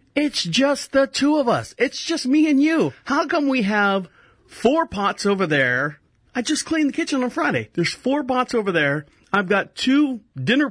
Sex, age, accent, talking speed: male, 40-59, American, 195 wpm